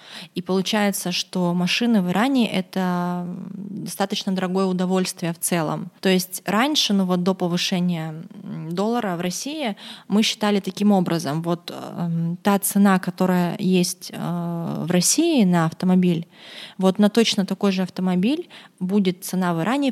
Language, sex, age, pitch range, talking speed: Russian, female, 20-39, 180-210 Hz, 145 wpm